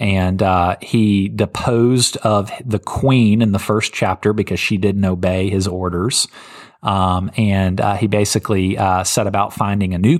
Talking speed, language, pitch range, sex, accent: 165 wpm, English, 95-110 Hz, male, American